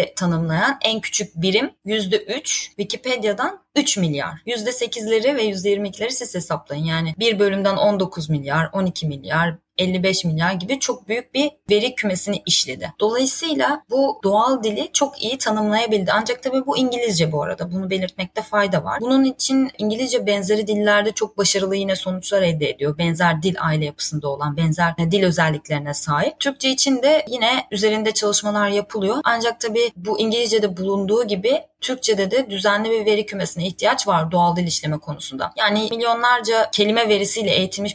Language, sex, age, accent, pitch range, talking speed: Turkish, female, 20-39, native, 180-225 Hz, 150 wpm